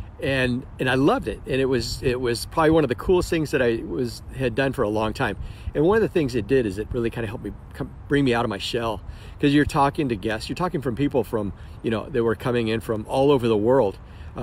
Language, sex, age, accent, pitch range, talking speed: English, male, 40-59, American, 110-160 Hz, 280 wpm